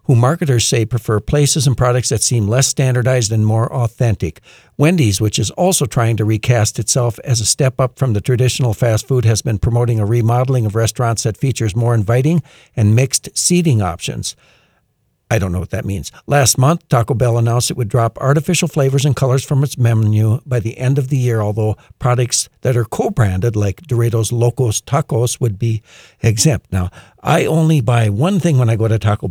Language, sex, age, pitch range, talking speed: English, male, 60-79, 110-140 Hz, 195 wpm